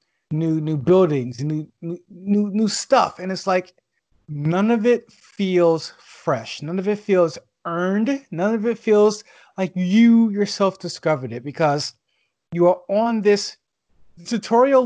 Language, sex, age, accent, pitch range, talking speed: English, male, 30-49, American, 160-215 Hz, 145 wpm